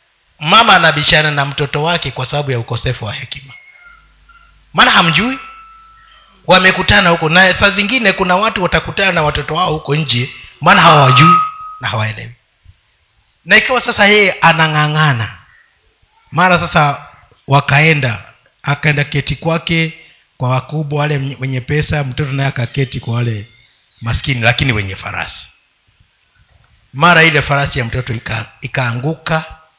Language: Swahili